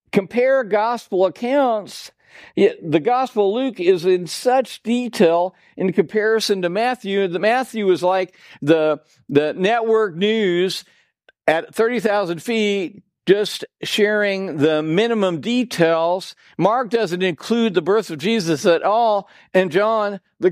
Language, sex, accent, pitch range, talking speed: English, male, American, 160-220 Hz, 125 wpm